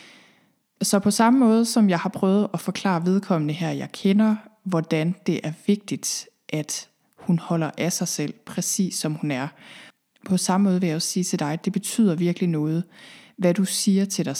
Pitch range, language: 160-200 Hz, Danish